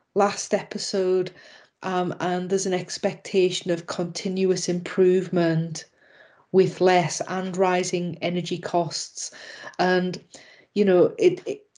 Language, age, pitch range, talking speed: English, 30-49, 175-195 Hz, 100 wpm